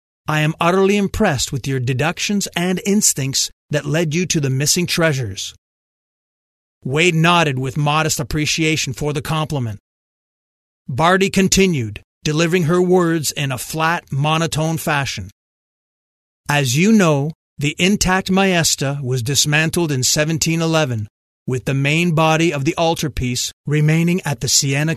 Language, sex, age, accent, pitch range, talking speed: English, male, 40-59, American, 130-165 Hz, 130 wpm